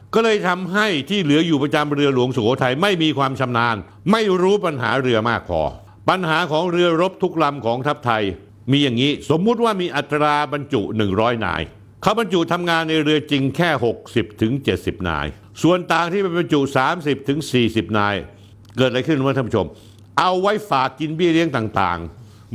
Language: Thai